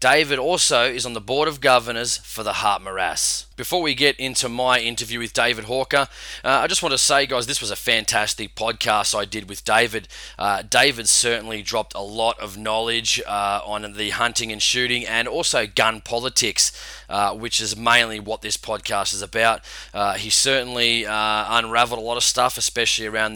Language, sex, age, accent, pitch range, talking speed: English, male, 20-39, Australian, 105-125 Hz, 195 wpm